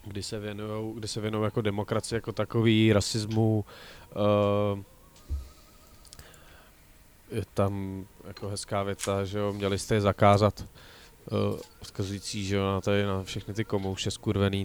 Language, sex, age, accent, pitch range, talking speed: Czech, male, 20-39, native, 100-115 Hz, 125 wpm